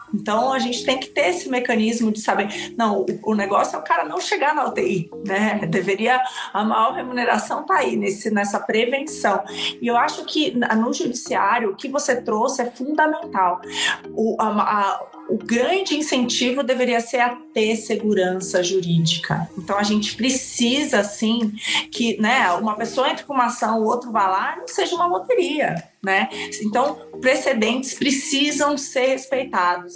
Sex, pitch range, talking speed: female, 205-265 Hz, 155 wpm